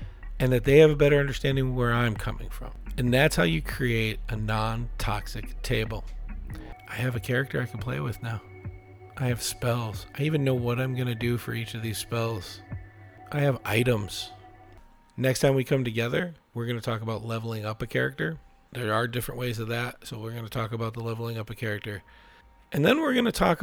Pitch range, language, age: 105-130 Hz, English, 40-59